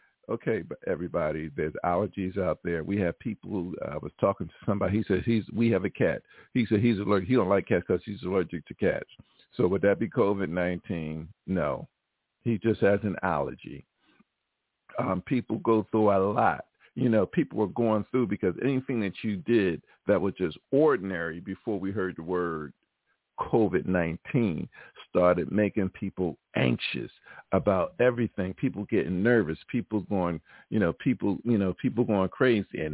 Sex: male